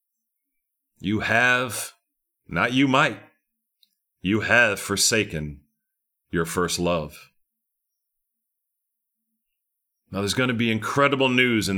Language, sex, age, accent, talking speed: English, male, 40-59, American, 95 wpm